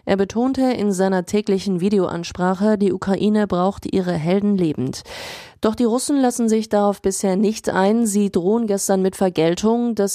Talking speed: 160 wpm